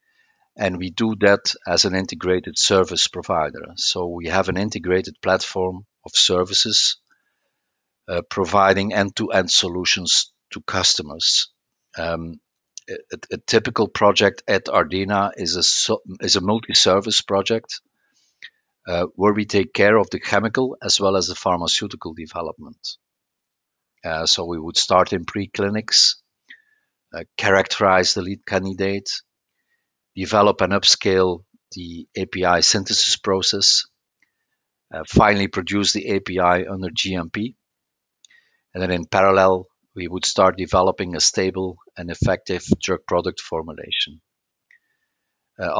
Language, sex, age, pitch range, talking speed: English, male, 50-69, 90-105 Hz, 120 wpm